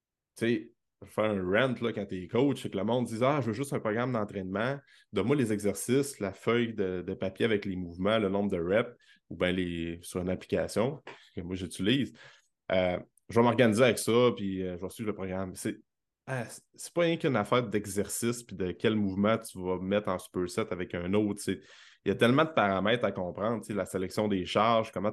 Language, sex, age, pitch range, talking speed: French, male, 20-39, 95-120 Hz, 220 wpm